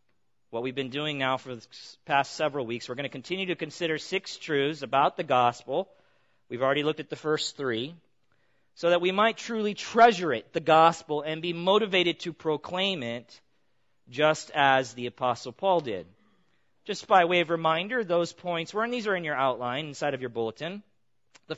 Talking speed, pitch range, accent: 190 wpm, 135-175 Hz, American